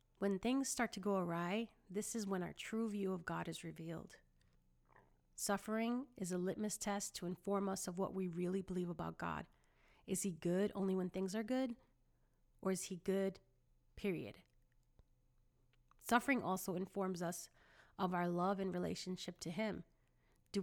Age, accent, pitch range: 30-49, American, 175-200 Hz